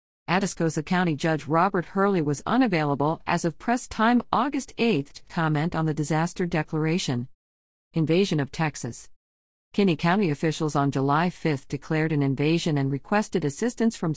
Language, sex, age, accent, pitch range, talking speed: English, female, 50-69, American, 150-205 Hz, 150 wpm